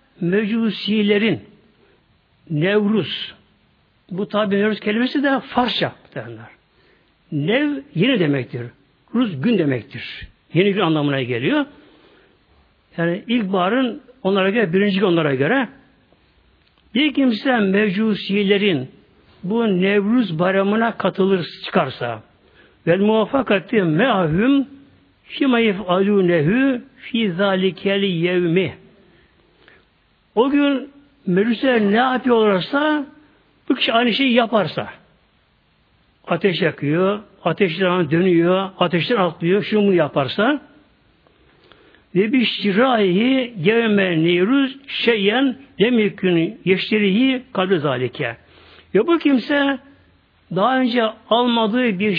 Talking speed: 90 wpm